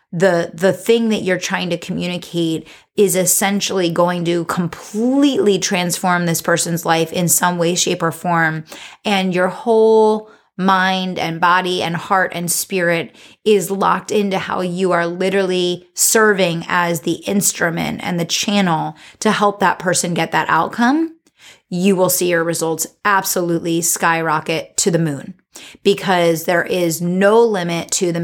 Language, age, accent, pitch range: English, 30-49, American, 170-195 Hz